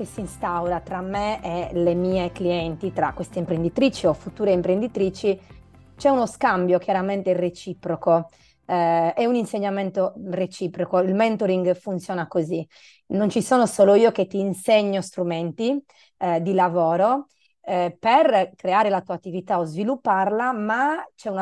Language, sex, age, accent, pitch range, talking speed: Italian, female, 30-49, native, 175-215 Hz, 145 wpm